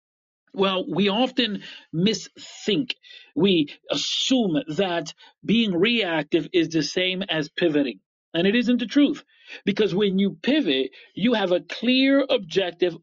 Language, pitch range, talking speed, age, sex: English, 180-235 Hz, 130 wpm, 40-59, male